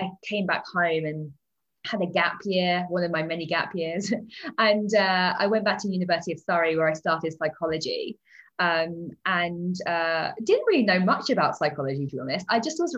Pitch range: 160-215 Hz